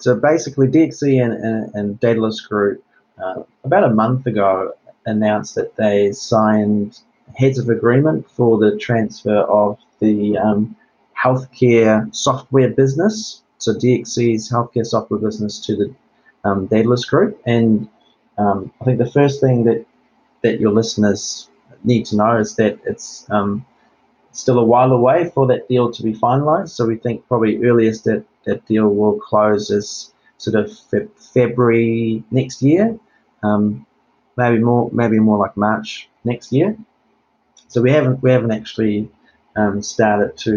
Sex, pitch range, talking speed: male, 105-125 Hz, 150 wpm